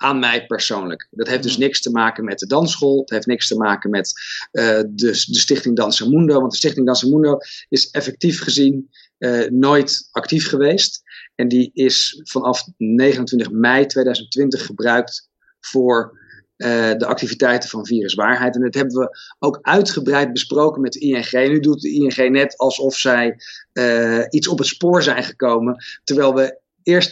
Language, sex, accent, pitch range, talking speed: Dutch, male, Dutch, 125-145 Hz, 175 wpm